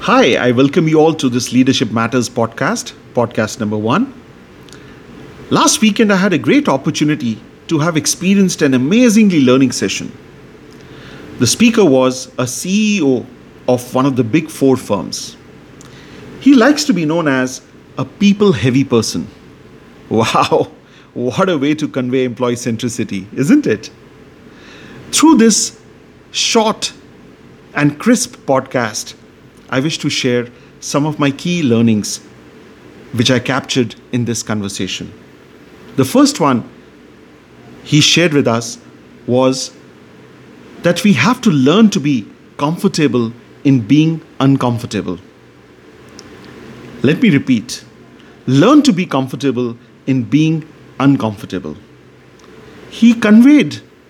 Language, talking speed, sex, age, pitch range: Punjabi, 125 wpm, male, 50-69, 115-170 Hz